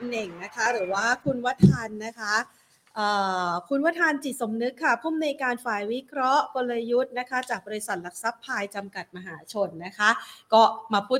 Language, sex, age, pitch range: Thai, female, 30-49, 195-245 Hz